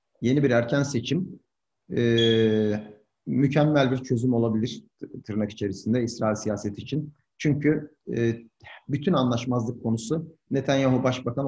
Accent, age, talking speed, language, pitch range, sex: native, 50-69, 110 wpm, Turkish, 115-145 Hz, male